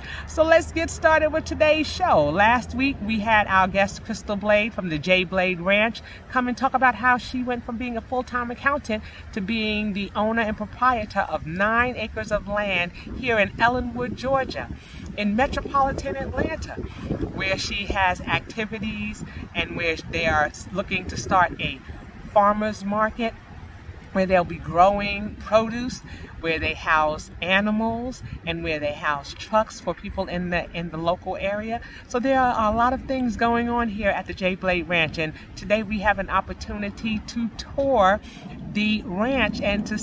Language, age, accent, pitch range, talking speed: English, 40-59, American, 185-240 Hz, 170 wpm